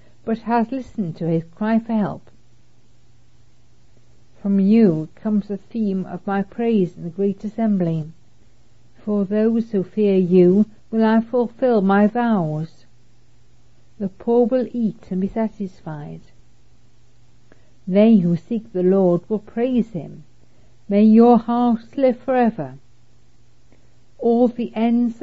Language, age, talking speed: English, 60-79, 125 wpm